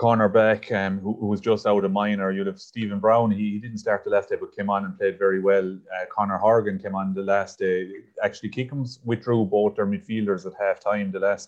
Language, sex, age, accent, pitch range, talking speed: English, male, 30-49, Irish, 95-115 Hz, 235 wpm